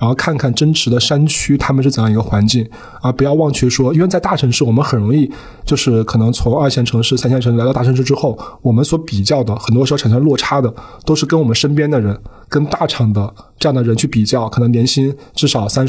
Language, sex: Chinese, male